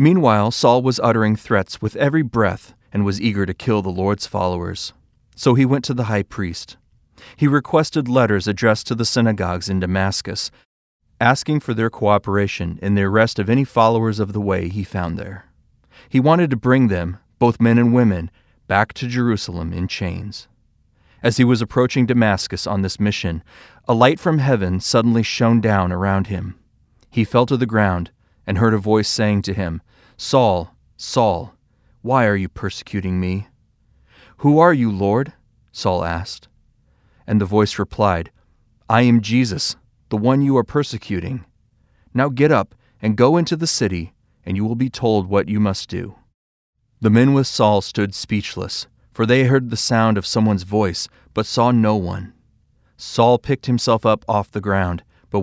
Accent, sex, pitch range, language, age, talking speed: American, male, 95-120 Hz, English, 30-49, 170 wpm